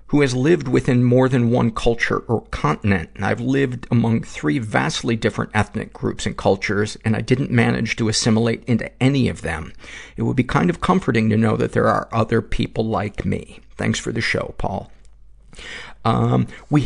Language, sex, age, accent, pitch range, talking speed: English, male, 50-69, American, 95-120 Hz, 185 wpm